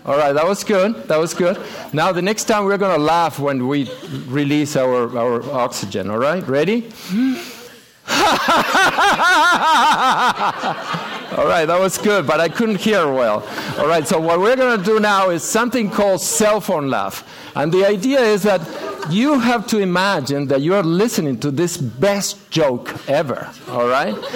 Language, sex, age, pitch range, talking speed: English, male, 50-69, 170-260 Hz, 165 wpm